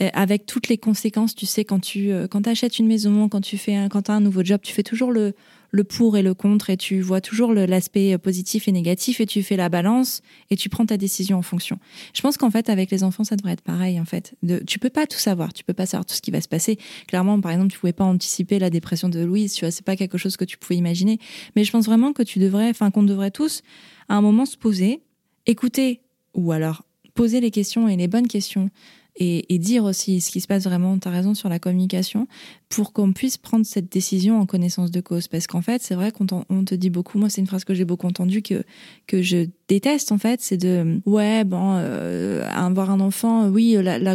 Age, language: 20-39, French